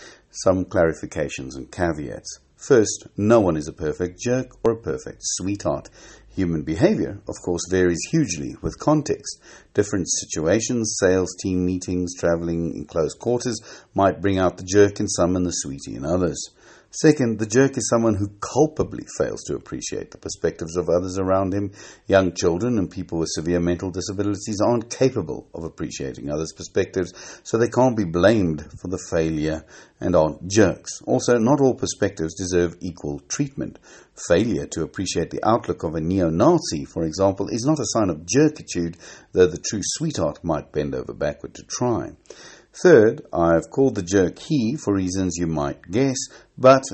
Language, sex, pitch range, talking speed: English, male, 85-110 Hz, 165 wpm